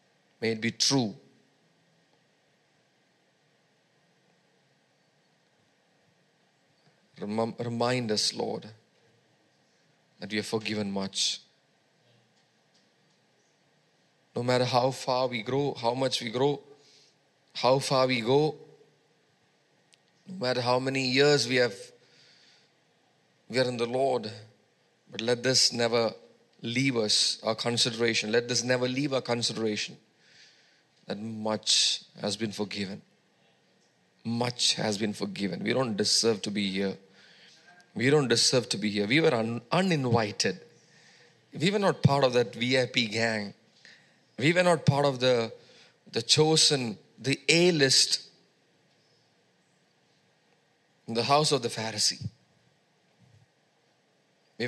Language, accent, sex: English, Indian, male